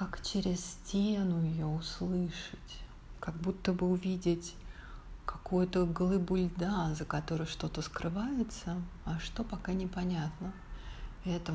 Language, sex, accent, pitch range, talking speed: Russian, female, native, 165-195 Hz, 110 wpm